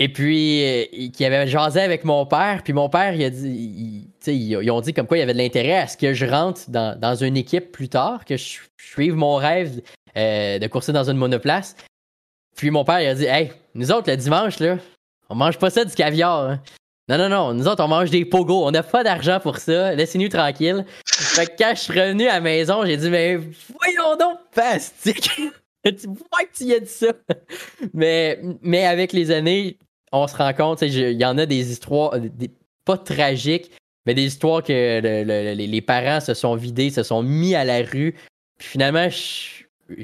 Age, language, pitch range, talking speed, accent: 20-39, French, 125-175 Hz, 220 wpm, Canadian